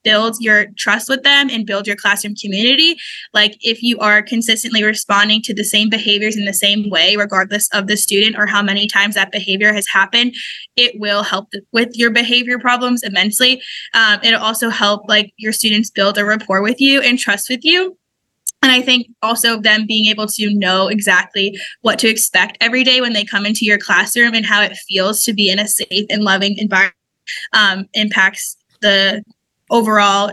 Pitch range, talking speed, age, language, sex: 205-235 Hz, 190 wpm, 10-29, English, female